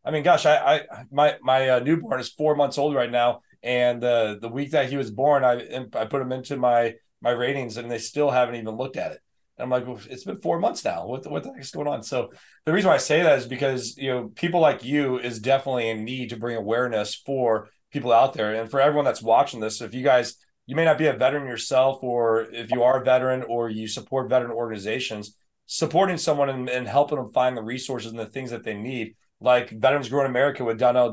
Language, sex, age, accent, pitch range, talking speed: English, male, 30-49, American, 110-130 Hz, 250 wpm